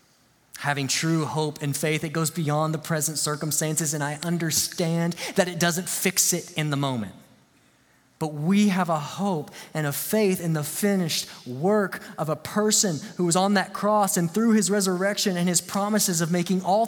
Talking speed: 185 wpm